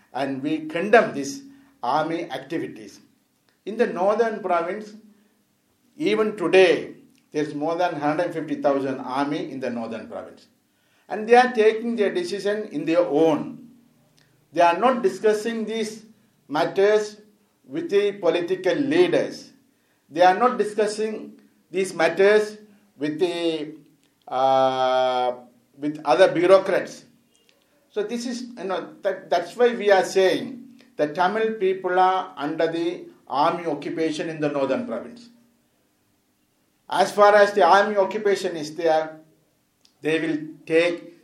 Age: 50-69